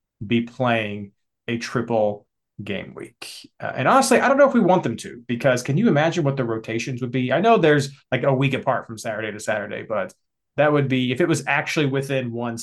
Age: 30-49